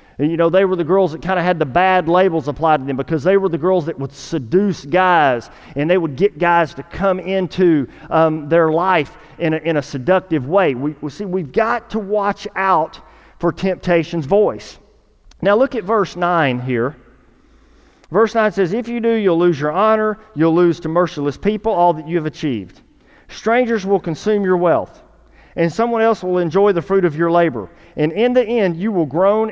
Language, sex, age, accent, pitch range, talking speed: English, male, 40-59, American, 160-205 Hz, 205 wpm